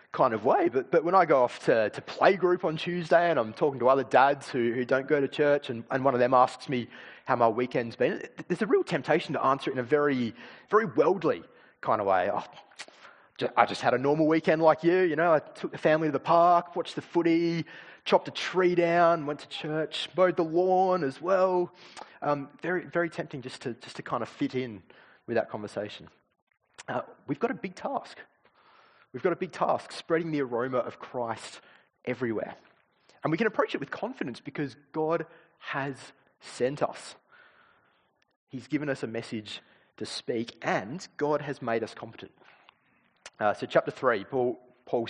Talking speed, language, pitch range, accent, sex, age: 200 wpm, English, 135-175 Hz, Australian, male, 30-49